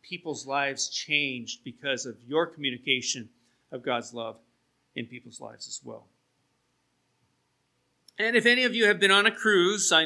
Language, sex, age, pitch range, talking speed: English, male, 40-59, 135-185 Hz, 155 wpm